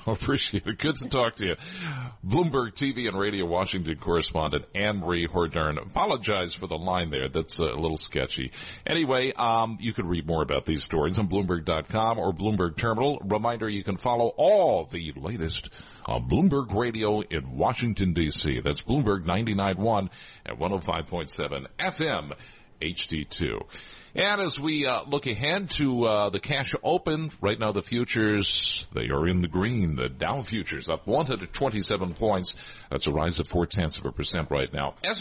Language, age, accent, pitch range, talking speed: English, 50-69, American, 85-120 Hz, 170 wpm